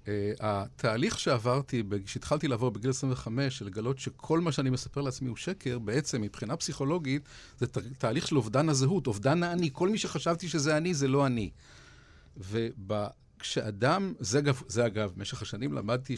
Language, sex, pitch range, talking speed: Hebrew, male, 120-165 Hz, 150 wpm